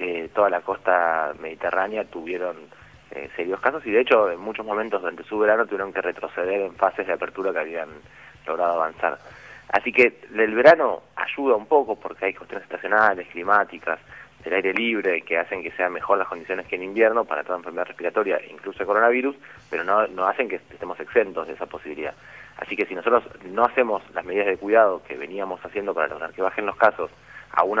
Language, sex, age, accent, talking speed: Italian, male, 30-49, Argentinian, 195 wpm